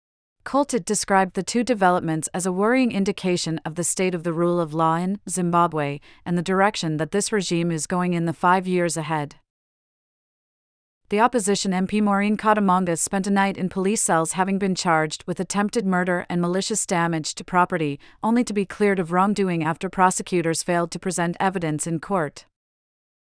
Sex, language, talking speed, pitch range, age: female, English, 175 wpm, 165-200 Hz, 40-59